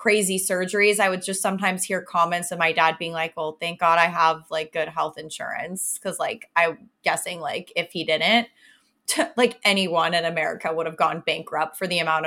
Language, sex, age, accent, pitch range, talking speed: English, female, 20-39, American, 170-210 Hz, 200 wpm